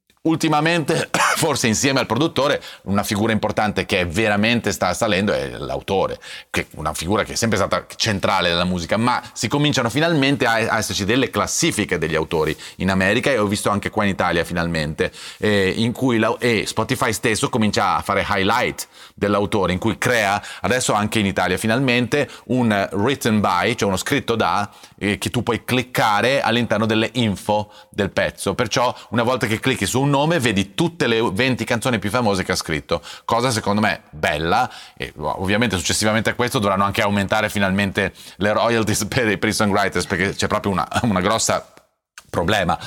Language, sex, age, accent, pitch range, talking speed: Italian, male, 30-49, native, 95-120 Hz, 175 wpm